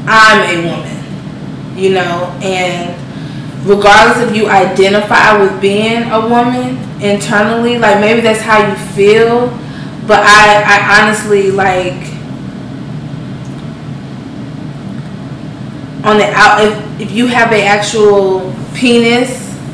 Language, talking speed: English, 110 wpm